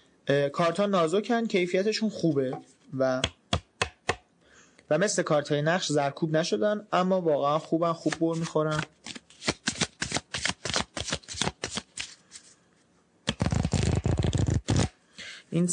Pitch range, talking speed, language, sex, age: 130-180 Hz, 65 wpm, Persian, male, 30-49